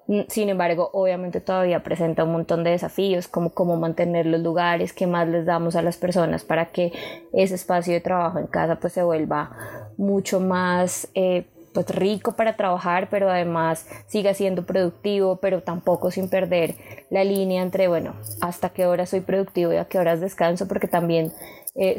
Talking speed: 175 wpm